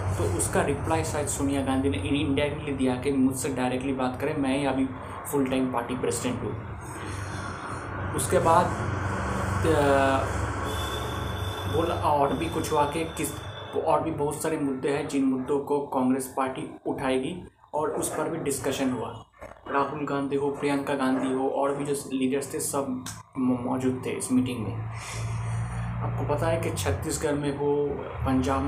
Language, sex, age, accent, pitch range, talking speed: Hindi, male, 20-39, native, 115-140 Hz, 160 wpm